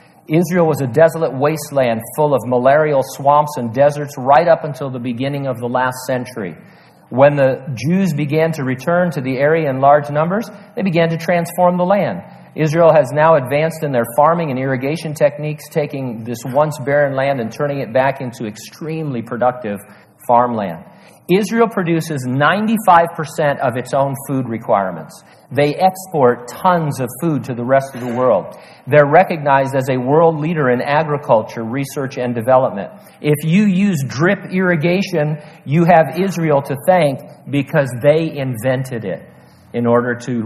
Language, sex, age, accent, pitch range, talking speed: English, male, 50-69, American, 130-165 Hz, 160 wpm